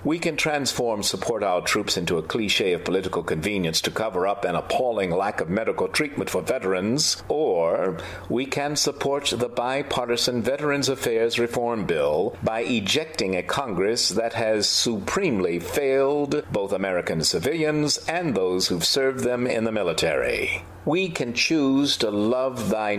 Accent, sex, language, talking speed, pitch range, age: American, male, English, 150 wpm, 115-145 Hz, 50-69